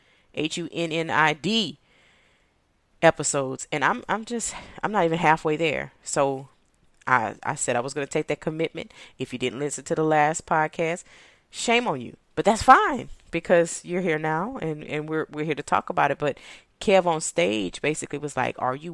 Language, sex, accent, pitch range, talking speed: English, female, American, 135-170 Hz, 195 wpm